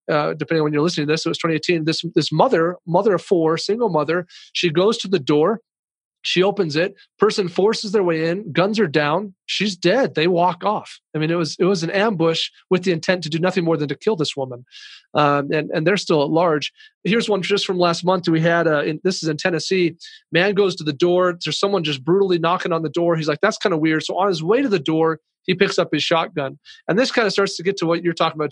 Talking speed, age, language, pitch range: 260 wpm, 30-49, English, 160-195 Hz